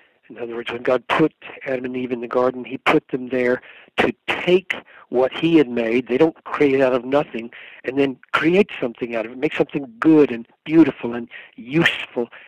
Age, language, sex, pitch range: 60-79, English, male, 130-160 Hz